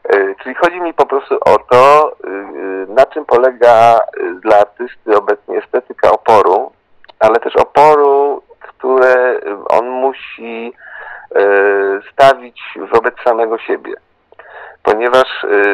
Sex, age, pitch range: male, 50-69, 100-130 Hz